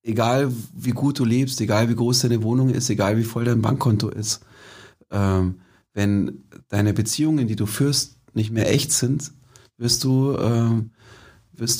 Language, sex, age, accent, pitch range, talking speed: German, male, 40-59, German, 105-125 Hz, 165 wpm